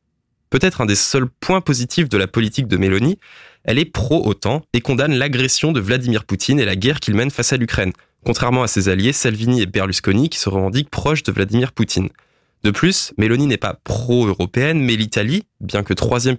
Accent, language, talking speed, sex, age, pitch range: French, French, 195 wpm, male, 20-39, 105-135 Hz